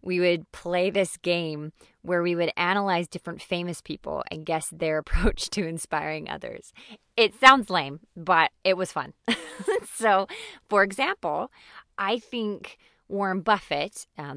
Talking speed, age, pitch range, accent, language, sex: 140 wpm, 20-39, 165-220 Hz, American, English, female